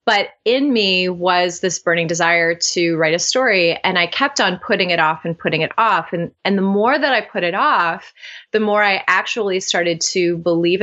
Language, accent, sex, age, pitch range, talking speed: English, American, female, 30-49, 170-210 Hz, 210 wpm